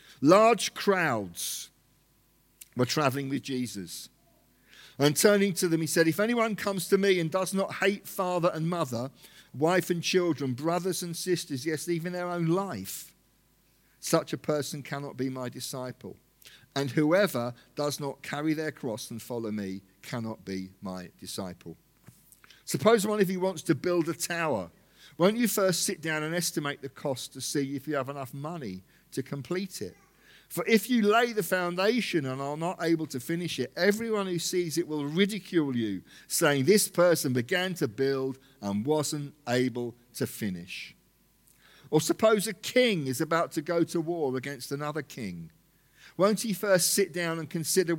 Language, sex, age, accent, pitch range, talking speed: English, male, 50-69, British, 130-180 Hz, 170 wpm